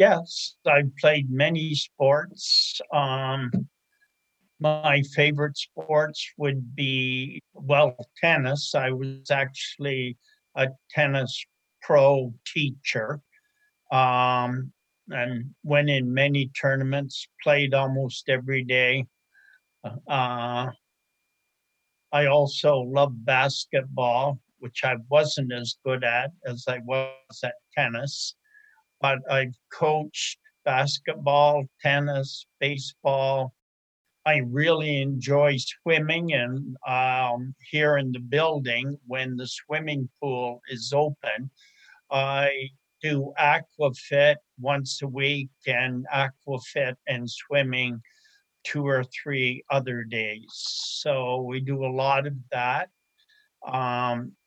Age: 60-79